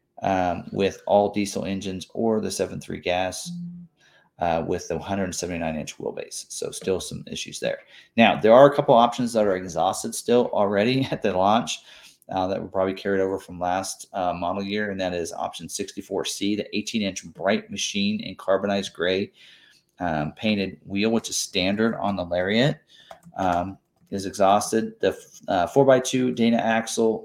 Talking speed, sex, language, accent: 160 wpm, male, English, American